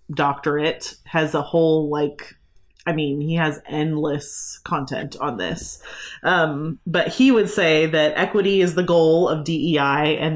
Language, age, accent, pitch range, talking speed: English, 30-49, American, 150-185 Hz, 150 wpm